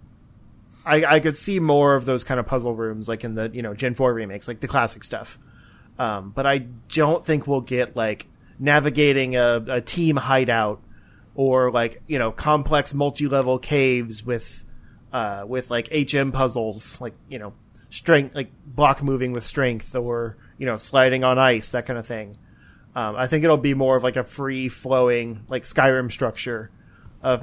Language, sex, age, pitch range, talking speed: English, male, 30-49, 115-140 Hz, 180 wpm